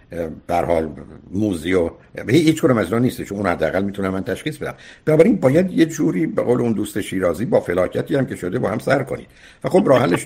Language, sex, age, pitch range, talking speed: Persian, male, 60-79, 90-130 Hz, 200 wpm